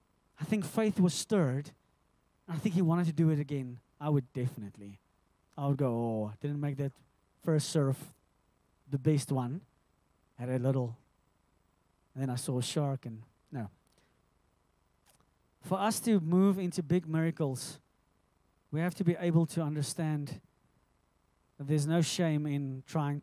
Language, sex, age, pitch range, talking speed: English, male, 20-39, 120-160 Hz, 155 wpm